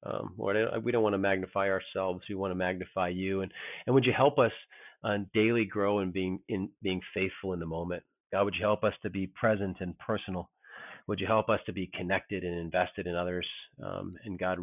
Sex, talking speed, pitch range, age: male, 220 wpm, 90-105 Hz, 40-59